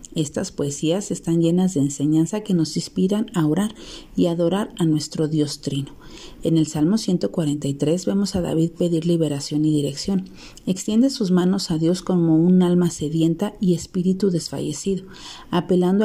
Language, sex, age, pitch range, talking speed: Spanish, female, 40-59, 160-200 Hz, 155 wpm